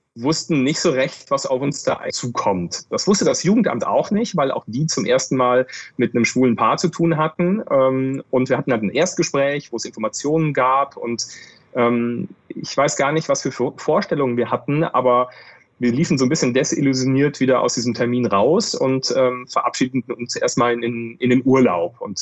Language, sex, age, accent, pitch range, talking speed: German, male, 30-49, German, 120-160 Hz, 190 wpm